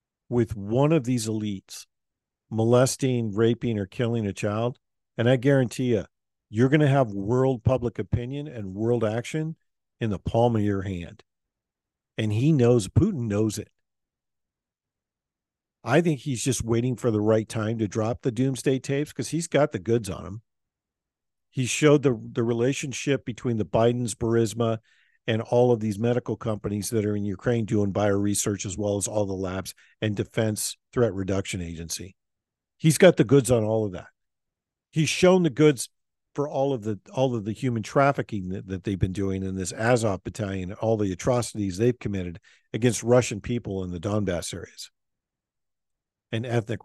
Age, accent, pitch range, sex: 50-69, American, 100-125 Hz, male